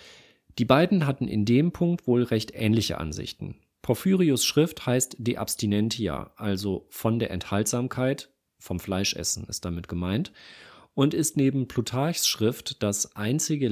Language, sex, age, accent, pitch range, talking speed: German, male, 40-59, German, 100-130 Hz, 135 wpm